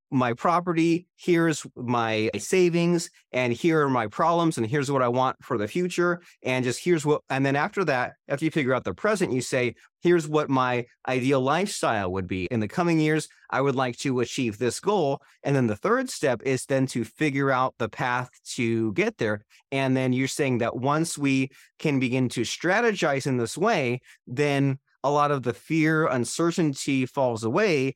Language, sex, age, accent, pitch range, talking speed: English, male, 30-49, American, 120-155 Hz, 195 wpm